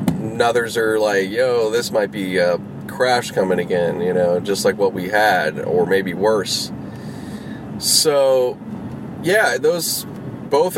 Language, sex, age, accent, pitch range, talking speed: English, male, 30-49, American, 110-180 Hz, 145 wpm